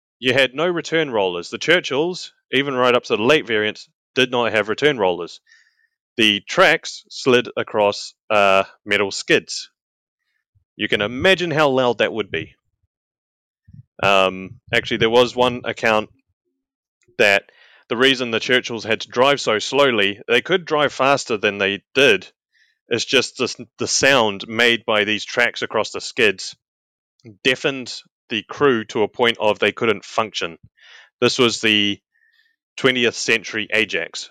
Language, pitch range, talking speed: English, 110-170 Hz, 150 wpm